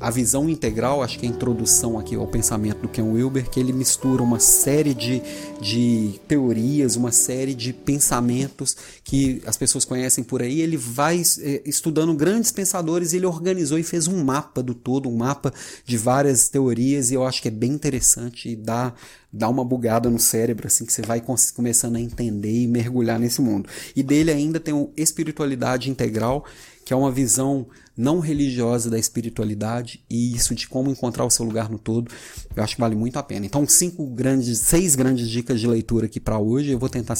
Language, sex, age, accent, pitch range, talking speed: Portuguese, male, 30-49, Brazilian, 115-140 Hz, 195 wpm